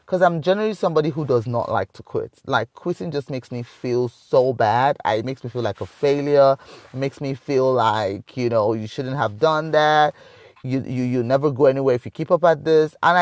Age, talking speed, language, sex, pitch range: 20-39, 230 wpm, English, male, 125-165 Hz